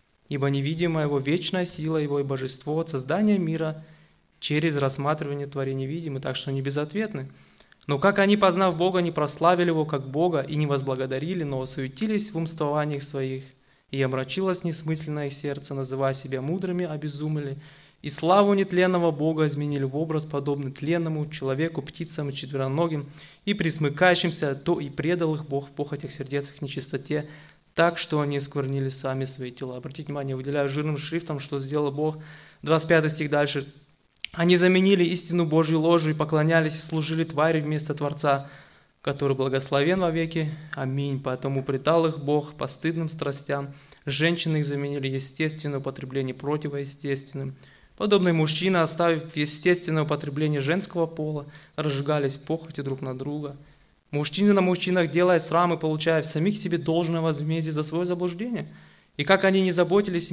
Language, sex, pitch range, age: Russian, male, 140-165 Hz, 20-39